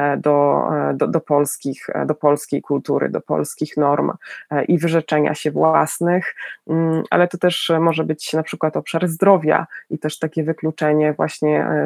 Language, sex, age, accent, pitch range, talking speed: Polish, female, 20-39, native, 150-175 Hz, 140 wpm